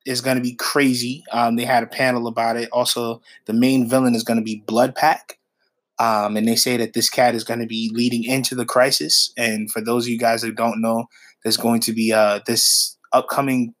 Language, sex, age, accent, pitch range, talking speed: English, male, 20-39, American, 115-130 Hz, 230 wpm